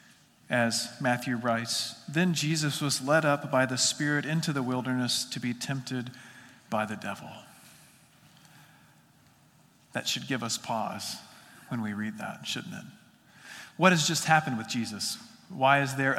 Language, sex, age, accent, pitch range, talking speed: English, male, 40-59, American, 140-205 Hz, 150 wpm